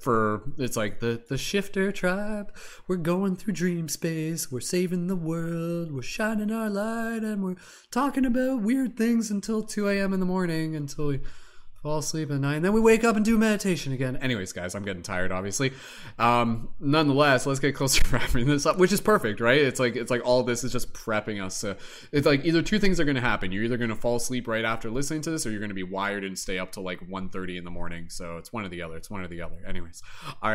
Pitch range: 95-145 Hz